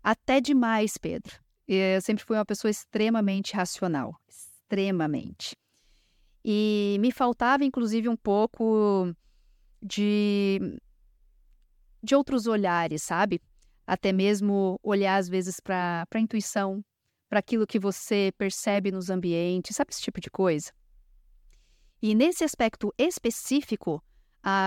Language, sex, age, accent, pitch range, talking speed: Portuguese, female, 40-59, Brazilian, 185-230 Hz, 115 wpm